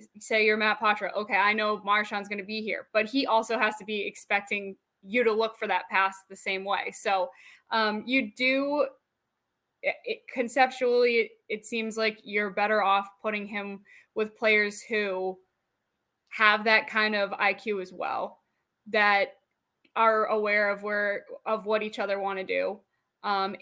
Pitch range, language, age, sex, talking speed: 190-225 Hz, English, 20-39, female, 170 wpm